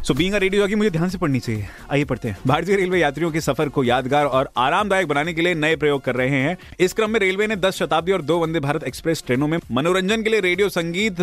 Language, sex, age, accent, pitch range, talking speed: Hindi, male, 30-49, native, 120-170 Hz, 250 wpm